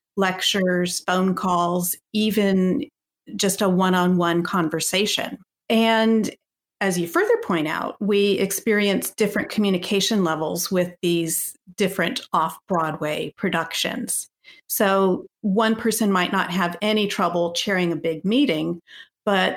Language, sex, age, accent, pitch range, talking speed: English, female, 40-59, American, 175-210 Hz, 115 wpm